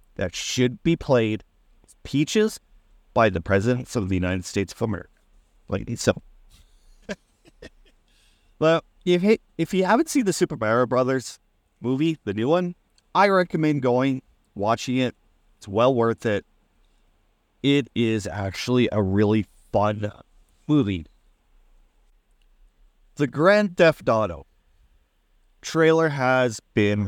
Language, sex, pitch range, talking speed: English, male, 95-140 Hz, 115 wpm